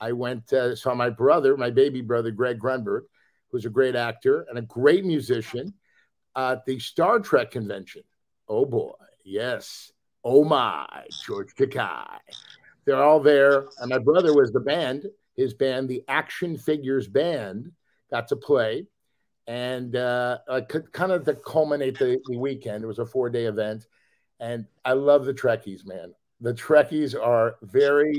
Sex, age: male, 50-69